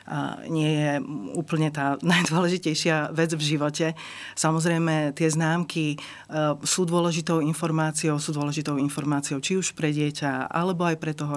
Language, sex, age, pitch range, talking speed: Slovak, female, 40-59, 145-165 Hz, 135 wpm